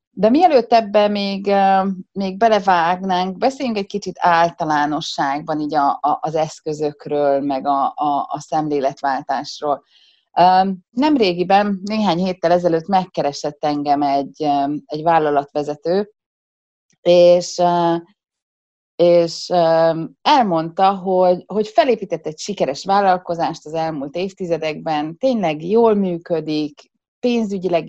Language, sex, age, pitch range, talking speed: Hungarian, female, 30-49, 155-210 Hz, 95 wpm